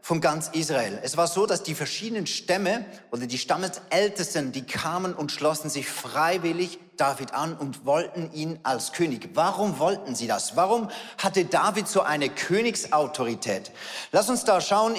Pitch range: 120-185 Hz